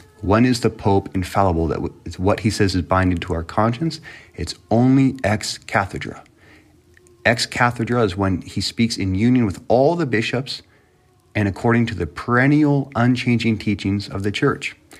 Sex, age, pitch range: male, 30-49, 90-120 Hz